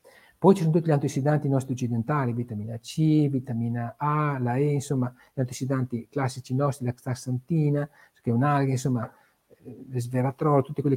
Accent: native